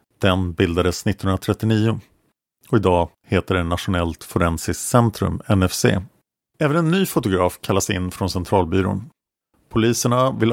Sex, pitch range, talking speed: male, 95-120 Hz, 120 wpm